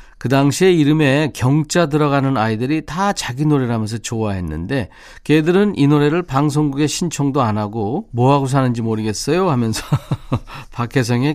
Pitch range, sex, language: 110-150 Hz, male, Korean